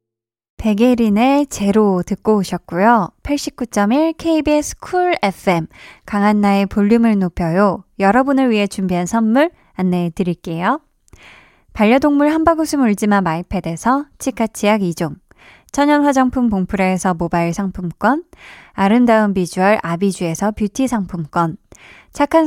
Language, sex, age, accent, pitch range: Korean, female, 20-39, native, 190-260 Hz